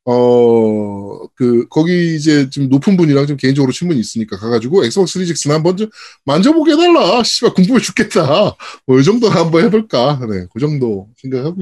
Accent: native